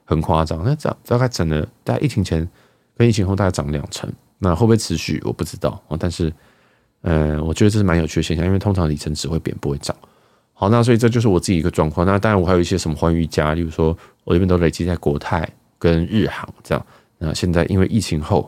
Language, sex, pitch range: Chinese, male, 80-100 Hz